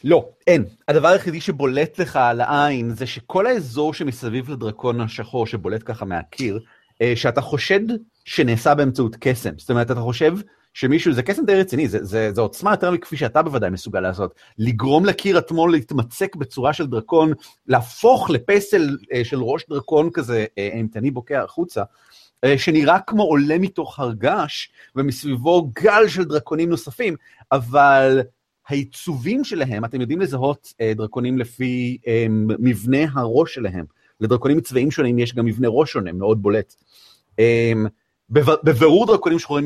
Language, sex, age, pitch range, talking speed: Hebrew, male, 30-49, 120-155 Hz, 140 wpm